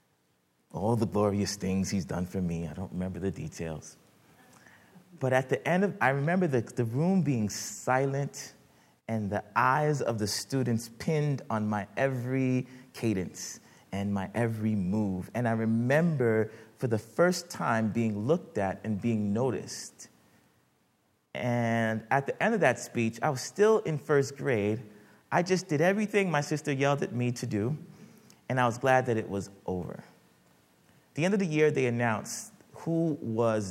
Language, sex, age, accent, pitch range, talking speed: English, male, 30-49, American, 100-140 Hz, 170 wpm